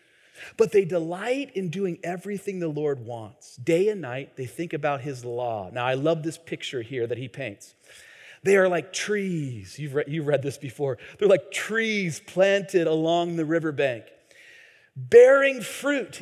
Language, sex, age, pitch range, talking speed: English, male, 40-59, 130-185 Hz, 165 wpm